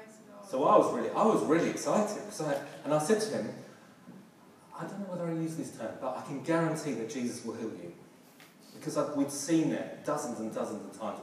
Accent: British